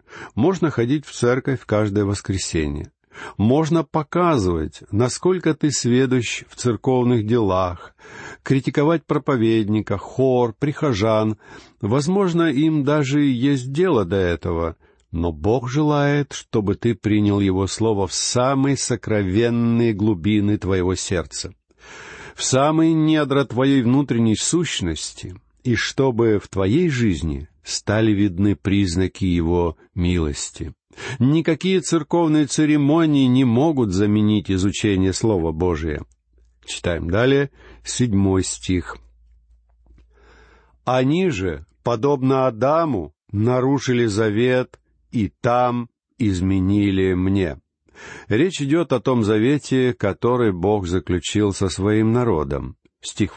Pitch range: 95-135 Hz